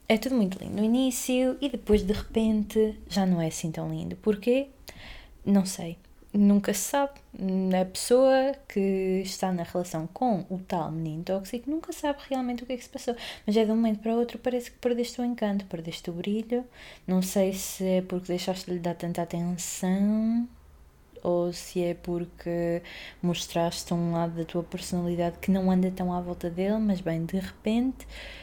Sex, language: female, Portuguese